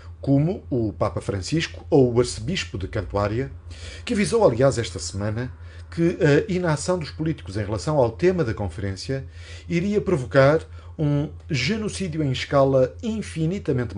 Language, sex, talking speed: Portuguese, male, 135 wpm